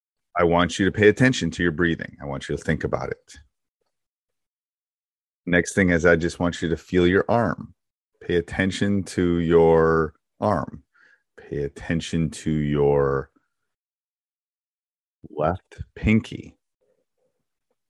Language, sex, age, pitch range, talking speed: English, male, 30-49, 75-95 Hz, 125 wpm